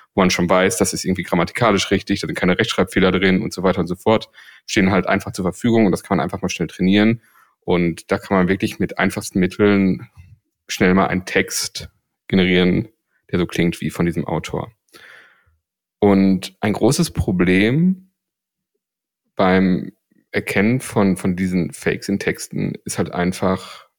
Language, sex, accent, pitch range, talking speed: German, male, German, 90-105 Hz, 170 wpm